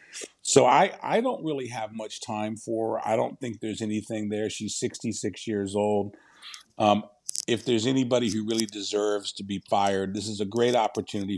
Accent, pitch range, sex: American, 100-130 Hz, male